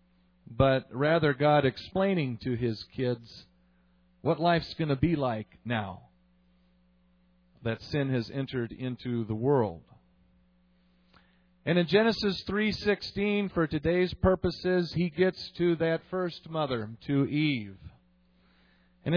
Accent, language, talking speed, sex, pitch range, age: American, English, 115 wpm, male, 115-180 Hz, 40-59